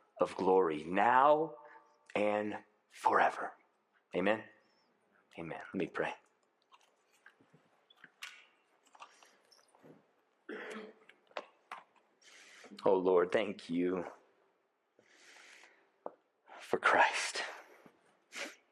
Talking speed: 50 wpm